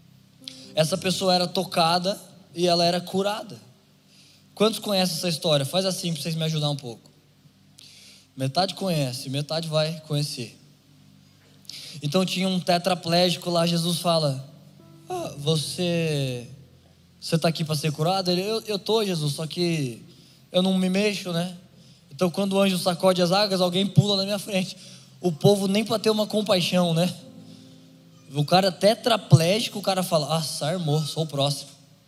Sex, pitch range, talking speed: male, 150-185 Hz, 155 wpm